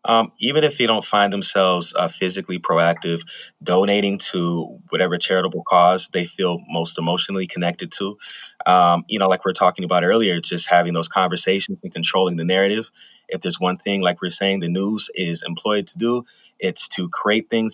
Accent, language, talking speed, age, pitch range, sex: American, English, 185 wpm, 30-49, 85-105 Hz, male